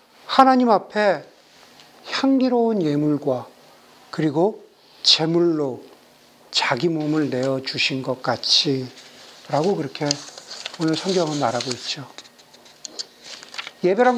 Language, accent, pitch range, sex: Korean, native, 175-255 Hz, male